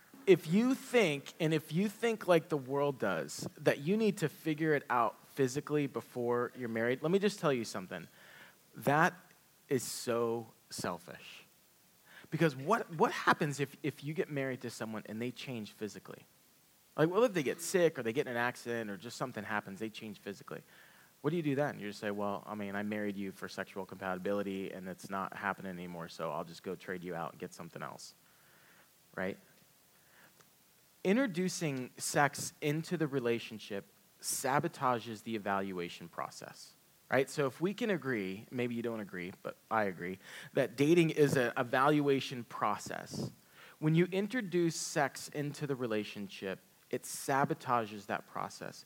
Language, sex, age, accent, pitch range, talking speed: English, male, 30-49, American, 110-160 Hz, 170 wpm